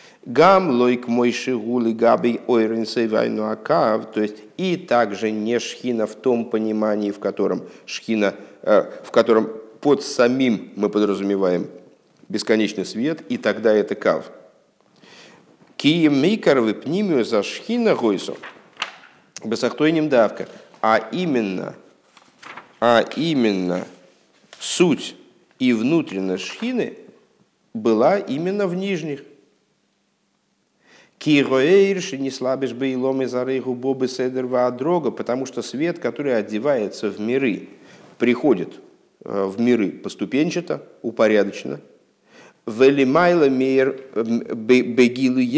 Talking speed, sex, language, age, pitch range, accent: 95 wpm, male, Russian, 50-69, 115-140 Hz, native